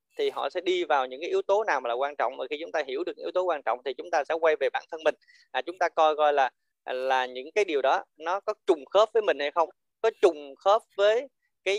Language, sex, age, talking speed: Vietnamese, male, 20-39, 290 wpm